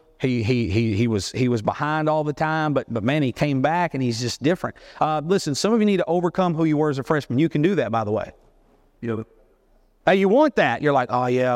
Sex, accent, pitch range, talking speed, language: male, American, 125-160 Hz, 270 wpm, English